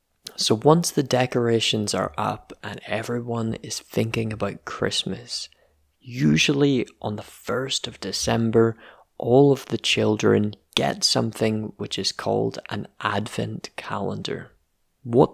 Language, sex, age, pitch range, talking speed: English, male, 20-39, 100-125 Hz, 120 wpm